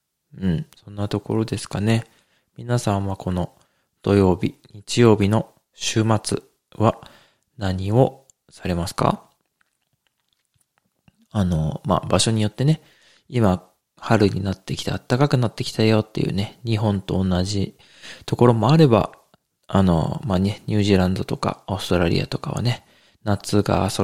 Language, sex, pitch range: Japanese, male, 95-115 Hz